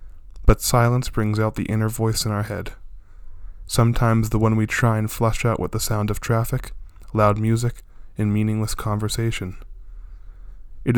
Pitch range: 90-115 Hz